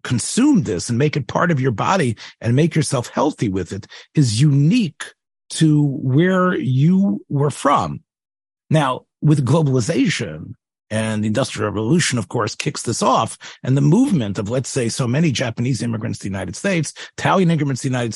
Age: 40-59